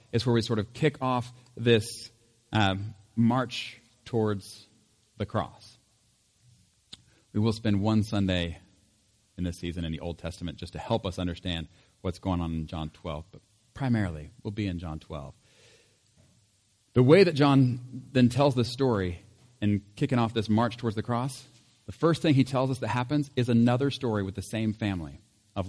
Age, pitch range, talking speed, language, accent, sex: 40-59, 100-125 Hz, 175 wpm, English, American, male